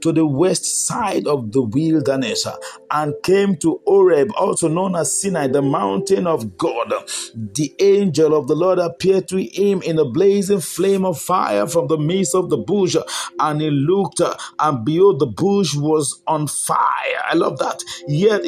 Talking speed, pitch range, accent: 170 wpm, 160-195 Hz, Nigerian